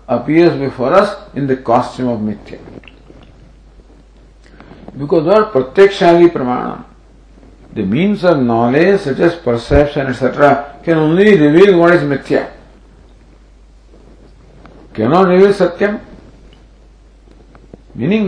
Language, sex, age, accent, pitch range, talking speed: English, male, 50-69, Indian, 135-175 Hz, 100 wpm